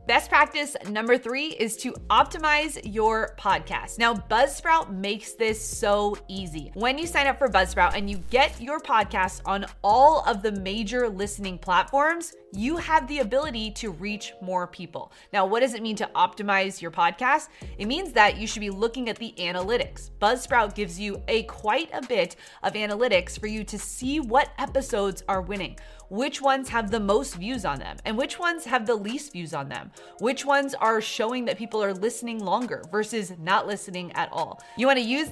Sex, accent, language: female, American, English